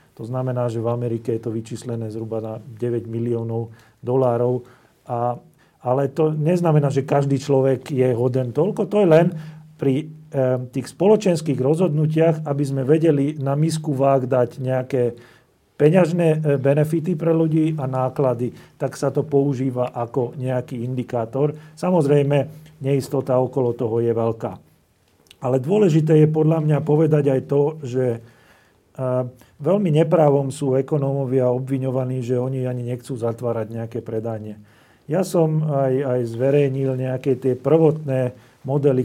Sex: male